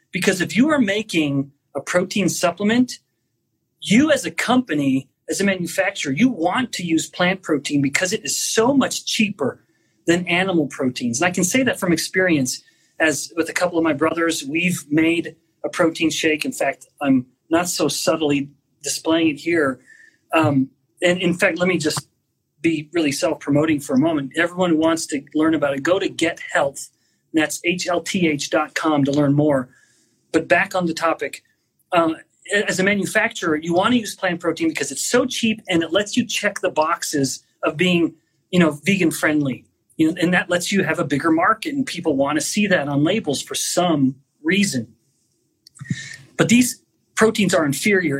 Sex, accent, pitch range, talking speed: male, American, 150-185 Hz, 180 wpm